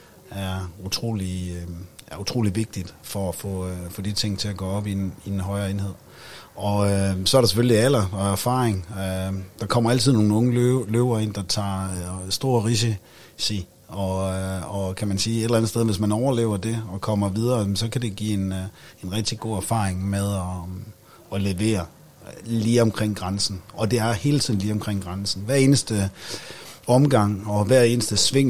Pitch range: 95-115 Hz